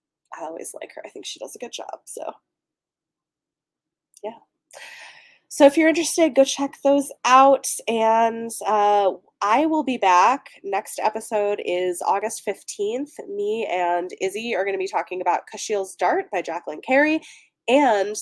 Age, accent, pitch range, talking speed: 20-39, American, 170-260 Hz, 155 wpm